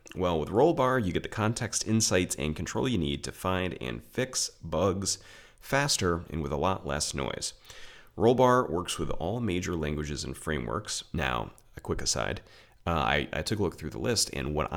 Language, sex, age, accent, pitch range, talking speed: English, male, 30-49, American, 70-95 Hz, 190 wpm